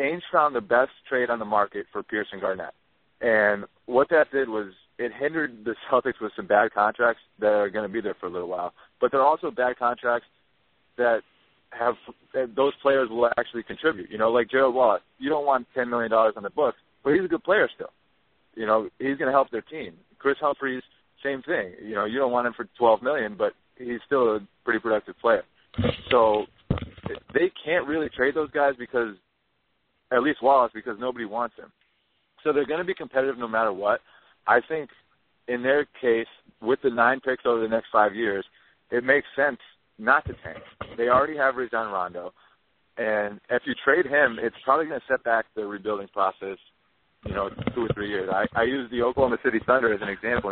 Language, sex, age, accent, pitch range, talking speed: English, male, 30-49, American, 110-135 Hz, 210 wpm